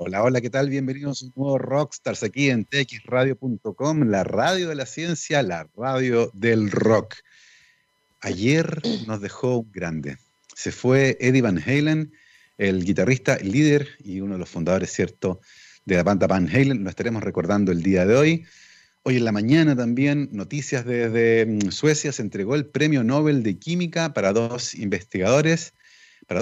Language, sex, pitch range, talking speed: Spanish, male, 110-145 Hz, 160 wpm